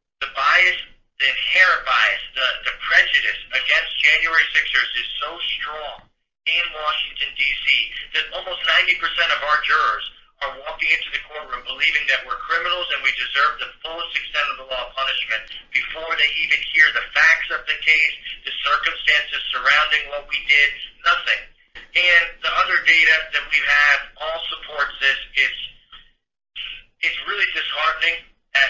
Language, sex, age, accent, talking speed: English, male, 50-69, American, 155 wpm